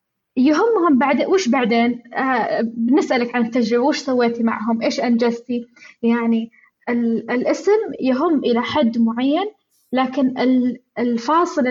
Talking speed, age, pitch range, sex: 110 wpm, 20-39, 235-290 Hz, female